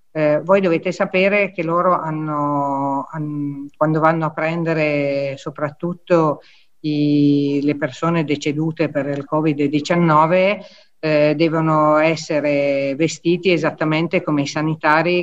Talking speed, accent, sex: 95 wpm, native, female